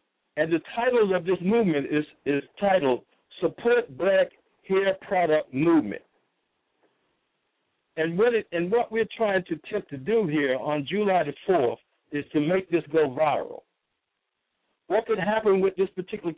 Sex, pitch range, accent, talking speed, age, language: male, 140-195 Hz, American, 155 wpm, 60-79, English